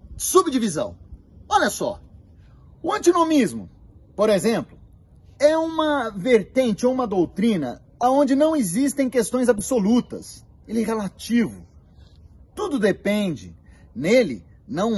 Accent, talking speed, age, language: Brazilian, 100 wpm, 30-49, Portuguese